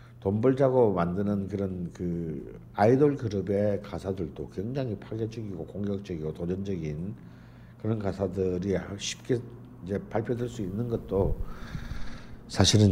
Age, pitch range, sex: 50-69, 85-125 Hz, male